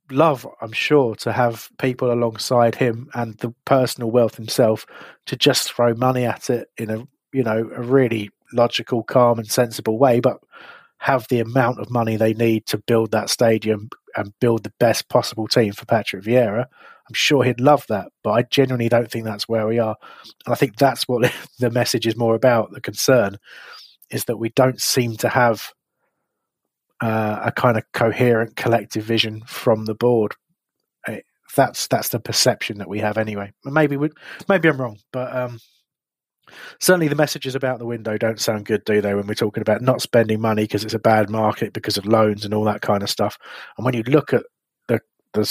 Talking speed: 195 wpm